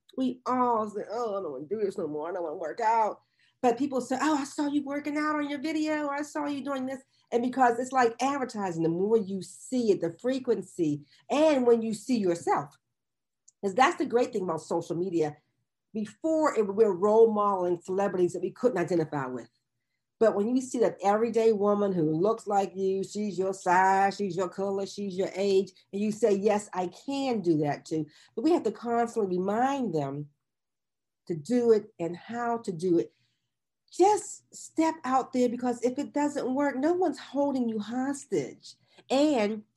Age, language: 40-59, English